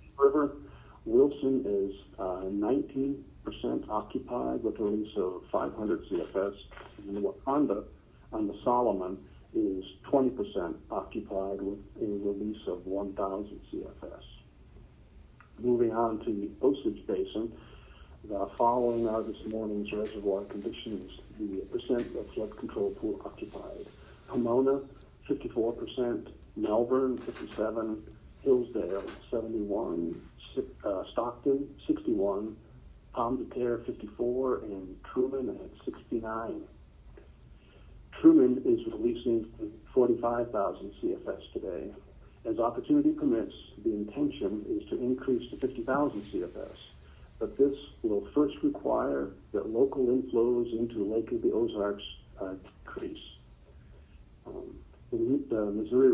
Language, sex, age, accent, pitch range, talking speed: English, male, 50-69, American, 100-140 Hz, 105 wpm